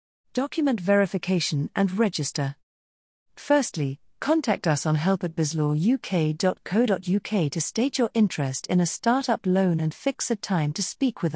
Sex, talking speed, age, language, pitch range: female, 135 wpm, 50-69, English, 150-210 Hz